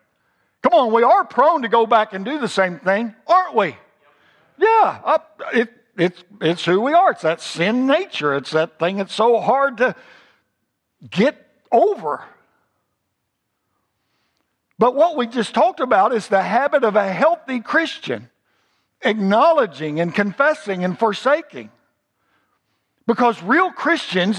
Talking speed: 135 wpm